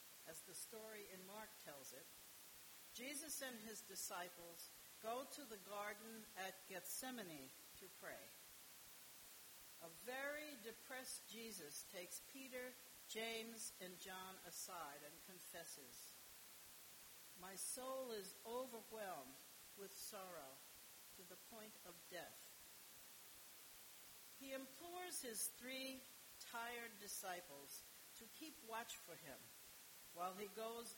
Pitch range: 185-250 Hz